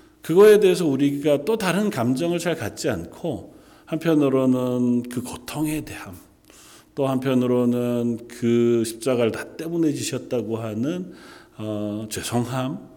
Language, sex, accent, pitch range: Korean, male, native, 105-155 Hz